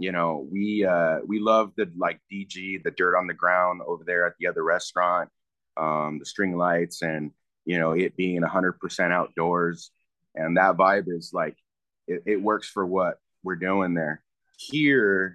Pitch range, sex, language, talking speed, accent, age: 85-105 Hz, male, English, 180 wpm, American, 30-49